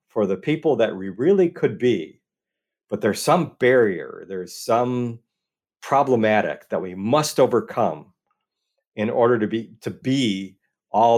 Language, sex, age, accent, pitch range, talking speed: English, male, 50-69, American, 100-125 Hz, 140 wpm